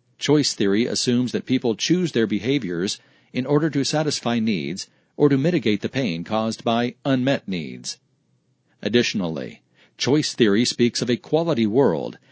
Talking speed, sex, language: 145 wpm, male, English